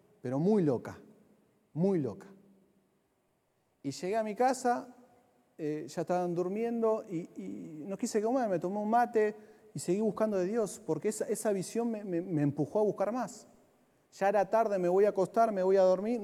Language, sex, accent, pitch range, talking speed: Spanish, male, Argentinian, 170-225 Hz, 185 wpm